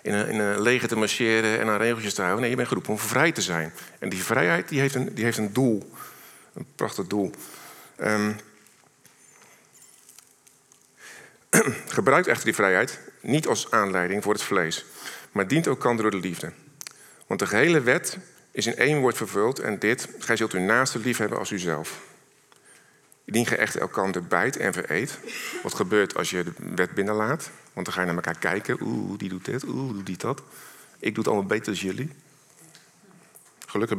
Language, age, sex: Dutch, 50-69, male